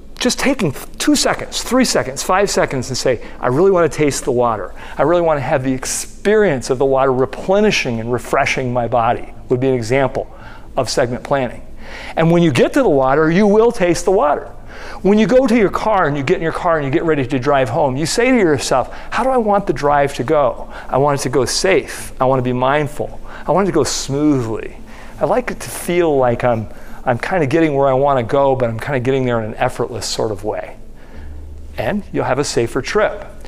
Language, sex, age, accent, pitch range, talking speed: English, male, 40-59, American, 130-180 Hz, 235 wpm